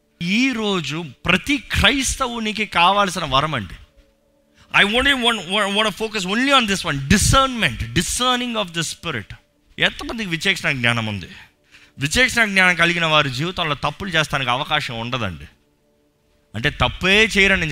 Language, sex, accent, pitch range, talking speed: Telugu, male, native, 125-200 Hz, 120 wpm